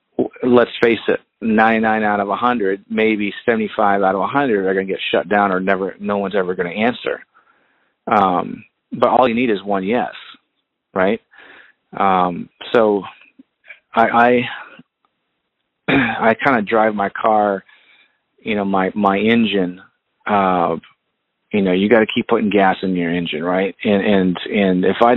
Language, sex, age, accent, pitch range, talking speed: English, male, 30-49, American, 100-115 Hz, 165 wpm